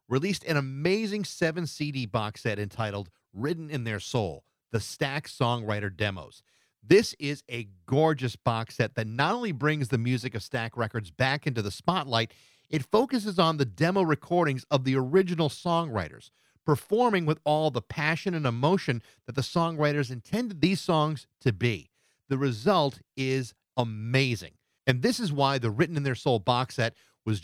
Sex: male